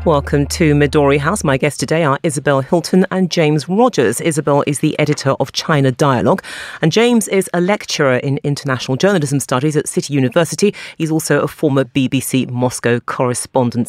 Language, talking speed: English, 170 wpm